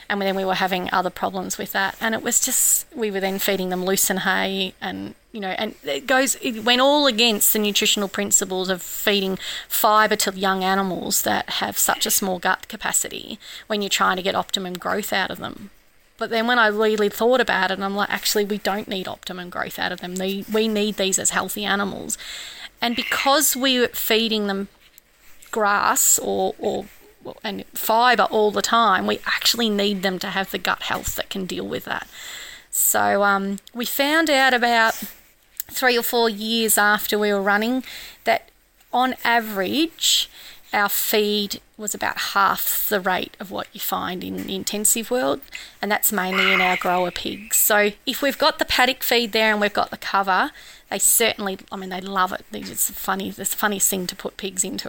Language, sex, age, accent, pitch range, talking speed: English, female, 30-49, Australian, 195-235 Hz, 195 wpm